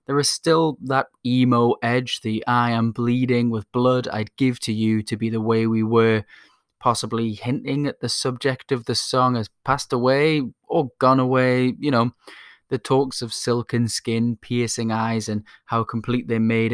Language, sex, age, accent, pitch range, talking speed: English, male, 20-39, British, 110-125 Hz, 180 wpm